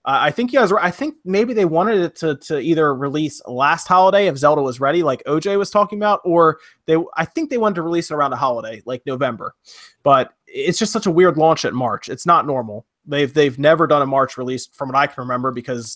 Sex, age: male, 30-49